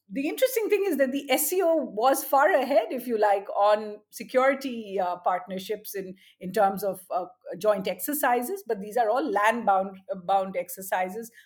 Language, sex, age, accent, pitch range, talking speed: English, female, 50-69, Indian, 205-270 Hz, 175 wpm